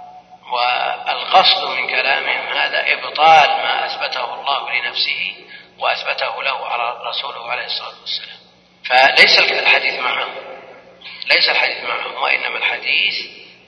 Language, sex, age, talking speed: Arabic, male, 40-59, 105 wpm